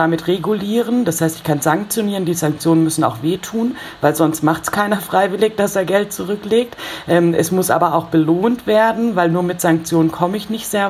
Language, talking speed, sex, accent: German, 205 wpm, female, German